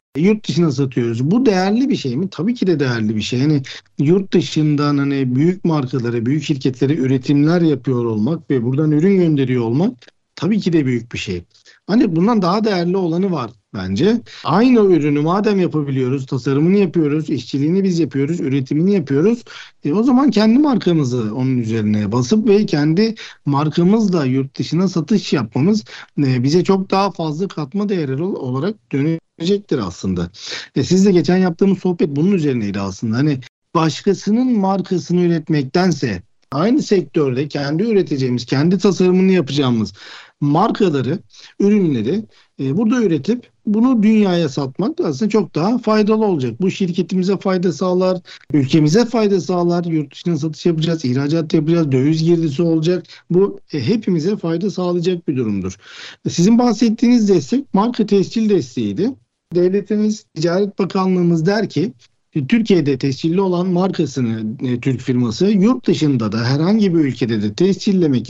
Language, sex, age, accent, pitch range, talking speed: Turkish, male, 60-79, native, 140-195 Hz, 140 wpm